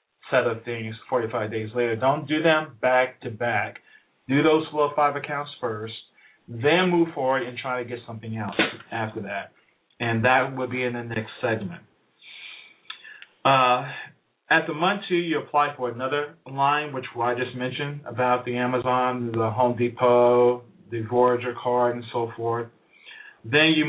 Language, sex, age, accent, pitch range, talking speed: English, male, 40-59, American, 120-145 Hz, 160 wpm